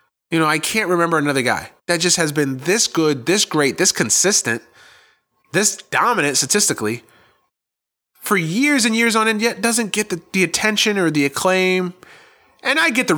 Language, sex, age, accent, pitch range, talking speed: English, male, 30-49, American, 120-180 Hz, 180 wpm